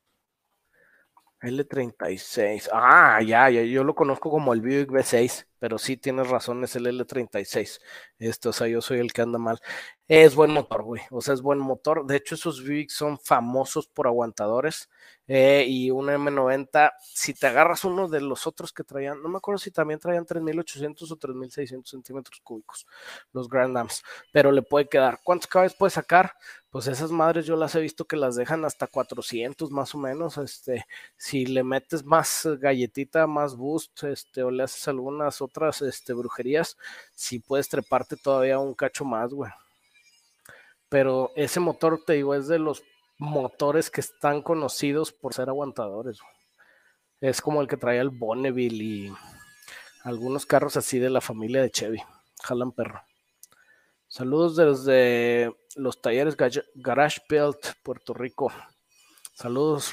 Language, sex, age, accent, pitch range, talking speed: Spanish, male, 20-39, Mexican, 125-155 Hz, 160 wpm